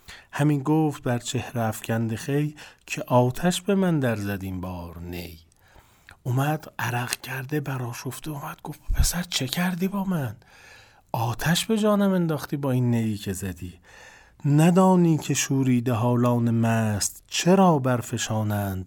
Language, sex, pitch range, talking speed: Persian, male, 110-145 Hz, 135 wpm